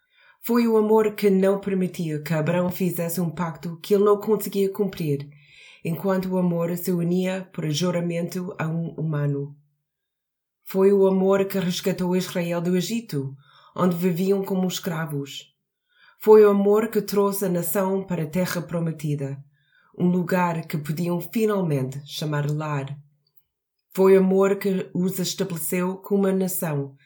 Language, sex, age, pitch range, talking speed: Portuguese, female, 20-39, 150-190 Hz, 145 wpm